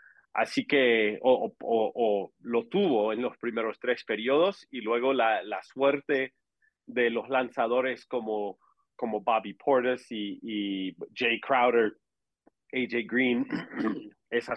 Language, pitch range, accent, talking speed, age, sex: English, 110-130 Hz, Mexican, 130 wpm, 40-59, male